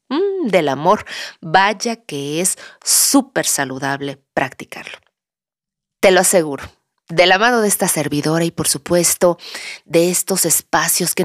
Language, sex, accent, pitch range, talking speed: Spanish, female, Mexican, 145-195 Hz, 130 wpm